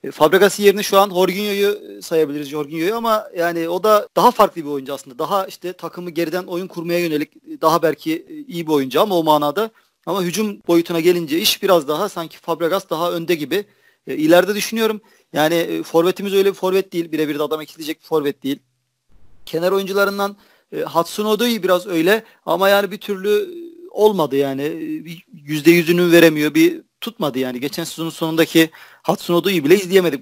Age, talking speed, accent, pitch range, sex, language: 40-59, 165 wpm, native, 155-195 Hz, male, Turkish